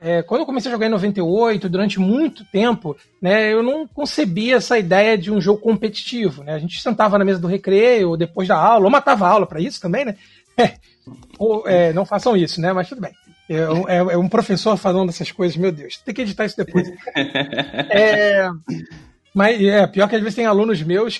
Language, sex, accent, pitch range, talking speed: Portuguese, male, Brazilian, 180-230 Hz, 210 wpm